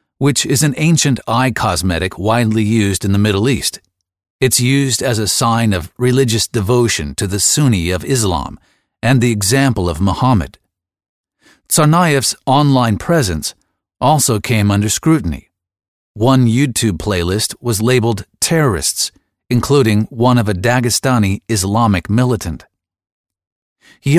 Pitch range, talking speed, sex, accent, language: 95-130 Hz, 125 wpm, male, American, English